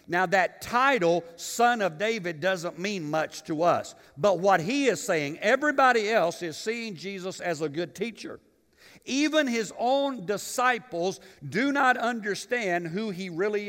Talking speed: 155 wpm